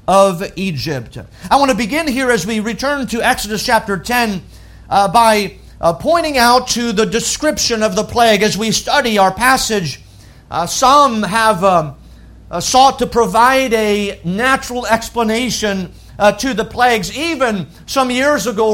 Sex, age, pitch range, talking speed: male, 50-69, 190-250 Hz, 150 wpm